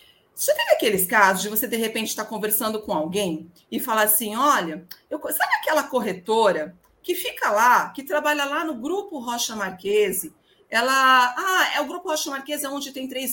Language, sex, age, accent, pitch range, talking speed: Portuguese, female, 40-59, Brazilian, 215-295 Hz, 175 wpm